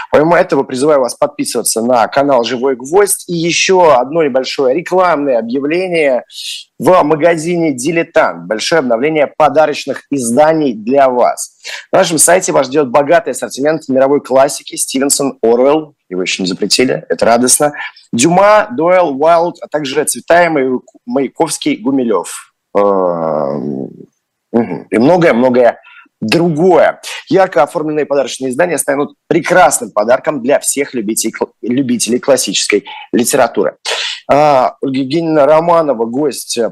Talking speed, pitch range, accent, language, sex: 115 wpm, 130-170 Hz, native, Russian, male